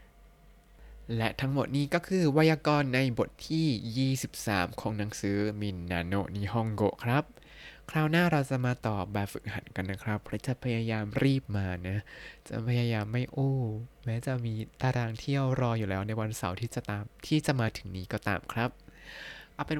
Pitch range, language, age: 105-135 Hz, Thai, 20-39